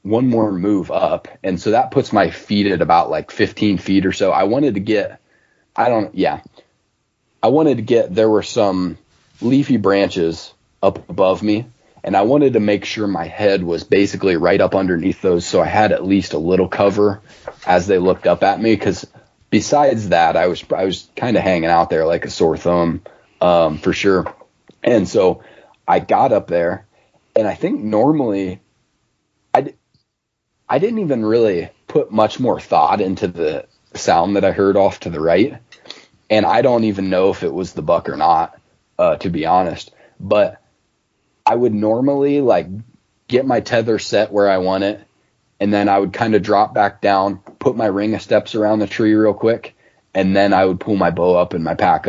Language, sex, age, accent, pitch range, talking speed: English, male, 30-49, American, 95-110 Hz, 195 wpm